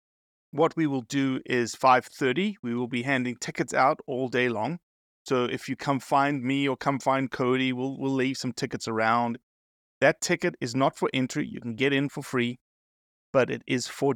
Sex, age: male, 30-49